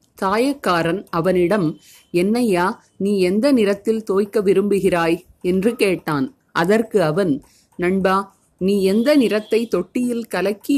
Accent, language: native, Tamil